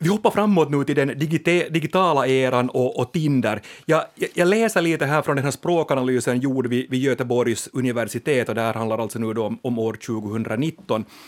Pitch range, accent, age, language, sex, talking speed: 130-175 Hz, Finnish, 30-49, Swedish, male, 190 wpm